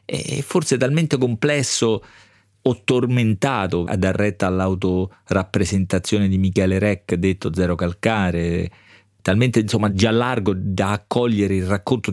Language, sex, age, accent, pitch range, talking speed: Italian, male, 40-59, native, 95-125 Hz, 110 wpm